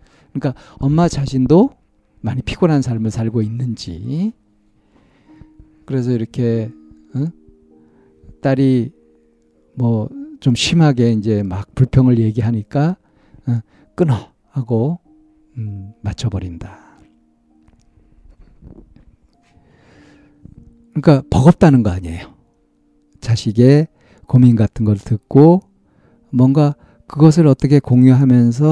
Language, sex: Korean, male